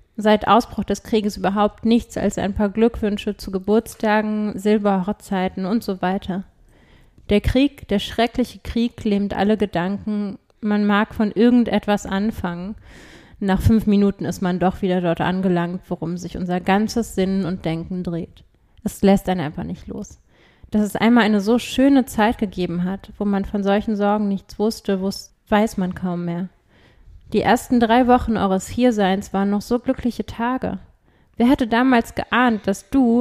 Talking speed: 165 wpm